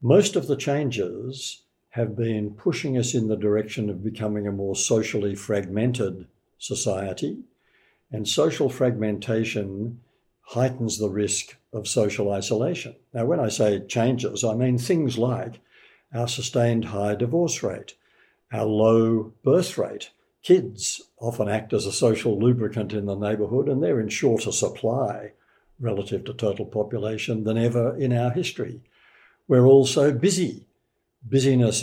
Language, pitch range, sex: English, 110-125 Hz, male